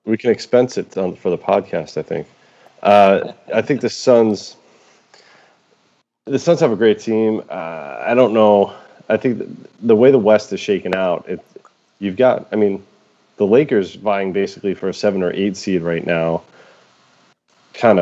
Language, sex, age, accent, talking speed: English, male, 30-49, American, 175 wpm